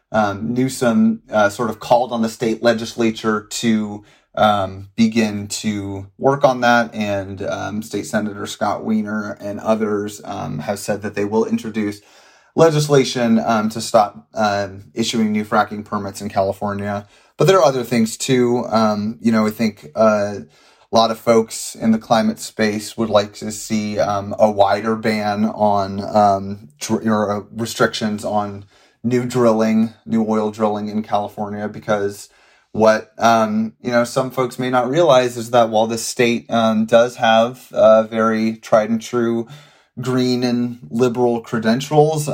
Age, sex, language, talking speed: 30-49, male, English, 155 wpm